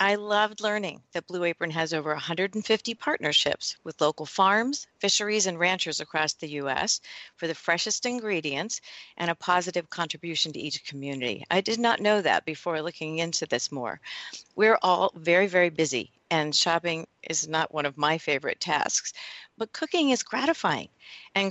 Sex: female